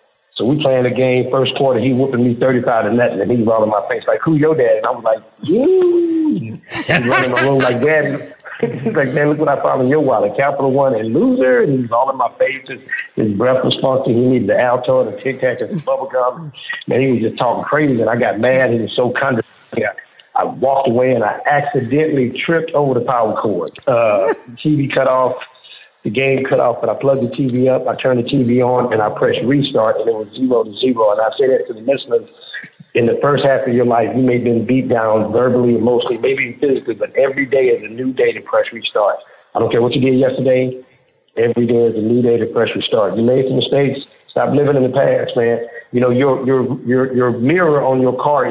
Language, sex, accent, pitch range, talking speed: English, male, American, 125-145 Hz, 245 wpm